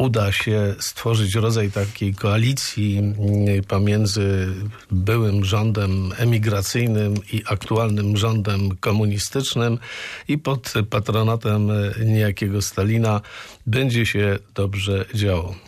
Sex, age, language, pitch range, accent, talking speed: male, 50-69, Polish, 105-120 Hz, native, 90 wpm